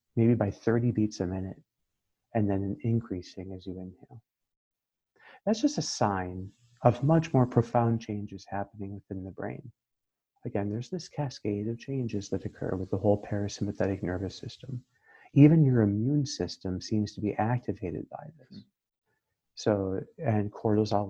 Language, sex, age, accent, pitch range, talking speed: English, male, 40-59, American, 95-125 Hz, 150 wpm